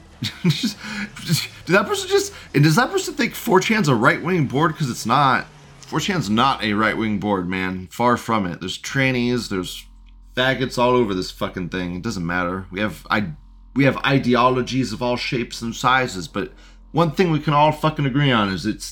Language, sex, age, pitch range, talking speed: English, male, 30-49, 105-150 Hz, 180 wpm